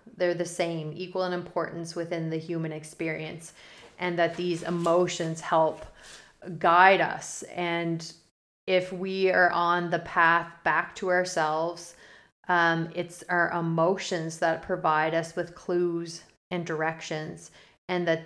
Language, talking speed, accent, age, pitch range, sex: English, 130 wpm, American, 30-49, 165-180 Hz, female